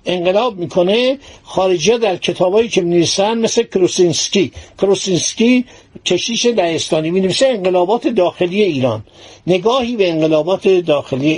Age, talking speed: 60-79, 115 wpm